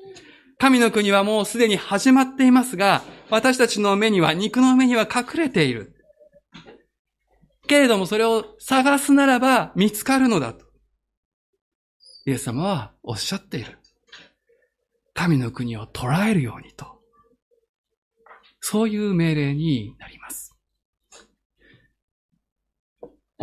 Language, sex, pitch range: Japanese, male, 165-255 Hz